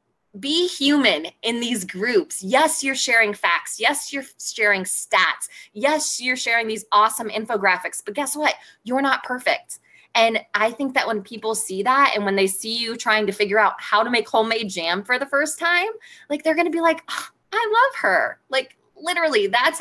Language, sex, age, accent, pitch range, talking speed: English, female, 20-39, American, 205-270 Hz, 195 wpm